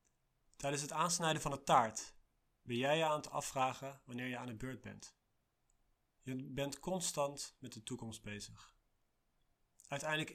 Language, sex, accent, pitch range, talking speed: English, male, Dutch, 120-145 Hz, 150 wpm